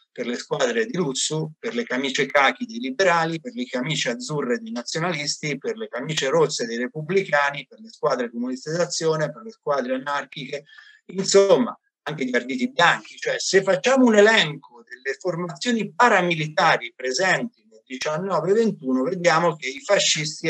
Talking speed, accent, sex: 150 wpm, native, male